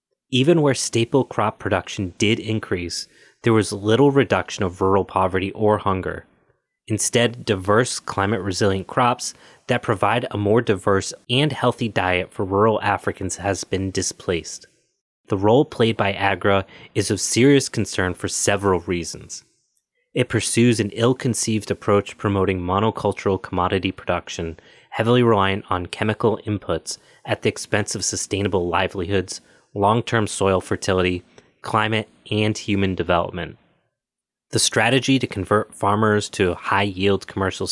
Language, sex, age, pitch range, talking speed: English, male, 30-49, 95-115 Hz, 130 wpm